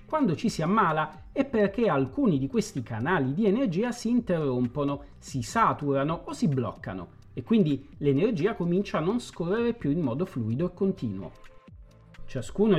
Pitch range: 130-200 Hz